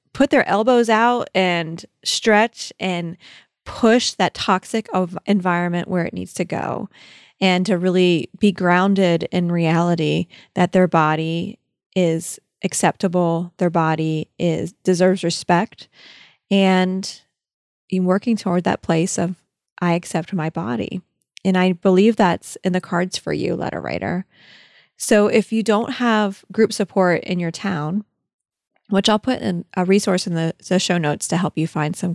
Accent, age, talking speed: American, 20-39, 150 wpm